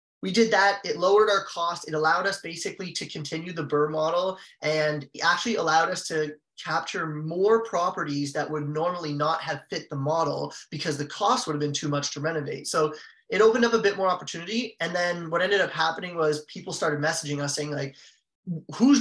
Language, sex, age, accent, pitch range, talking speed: English, male, 20-39, American, 150-185 Hz, 200 wpm